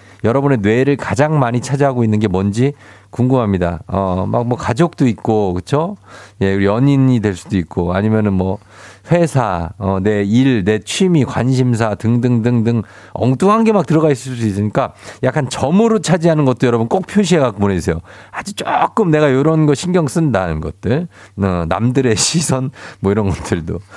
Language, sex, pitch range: Korean, male, 105-170 Hz